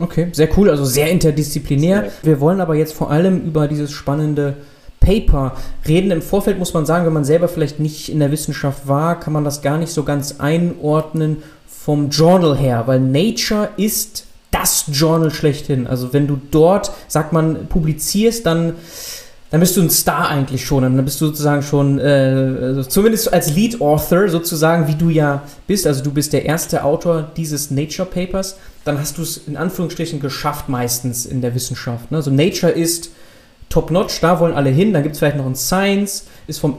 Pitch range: 145-175 Hz